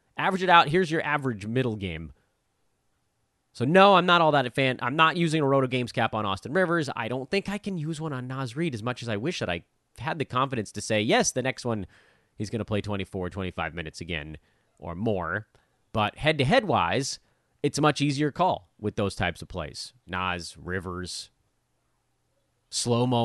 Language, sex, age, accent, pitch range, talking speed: English, male, 30-49, American, 100-155 Hz, 200 wpm